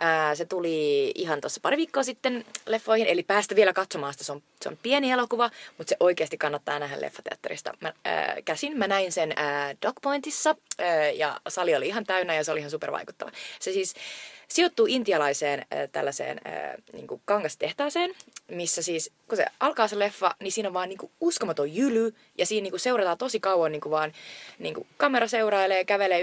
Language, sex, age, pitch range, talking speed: Finnish, female, 20-39, 165-240 Hz, 175 wpm